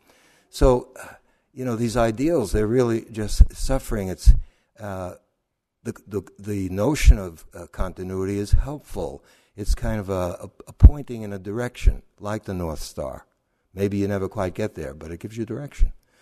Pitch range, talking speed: 85-105 Hz, 165 wpm